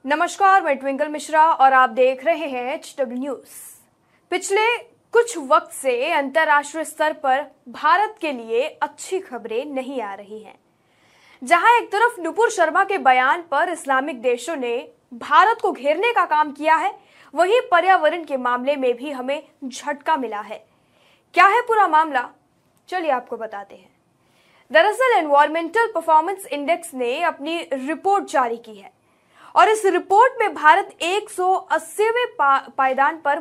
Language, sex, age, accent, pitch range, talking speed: Hindi, female, 20-39, native, 275-360 Hz, 145 wpm